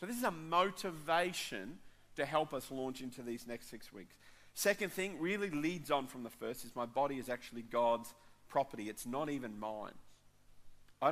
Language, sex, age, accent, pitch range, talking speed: English, male, 40-59, Australian, 110-135 Hz, 185 wpm